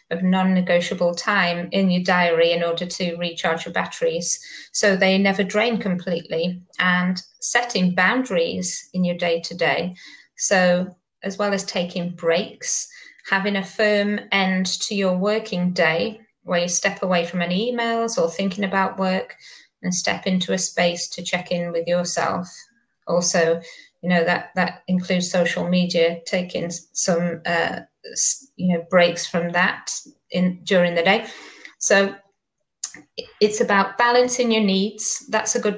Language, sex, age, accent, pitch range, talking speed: English, female, 20-39, British, 175-200 Hz, 145 wpm